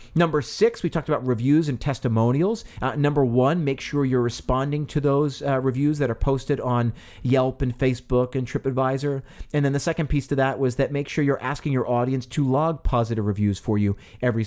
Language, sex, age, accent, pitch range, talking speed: English, male, 40-59, American, 115-140 Hz, 205 wpm